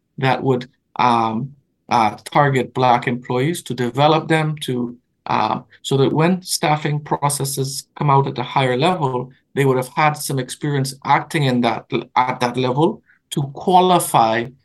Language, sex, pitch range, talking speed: English, male, 130-155 Hz, 150 wpm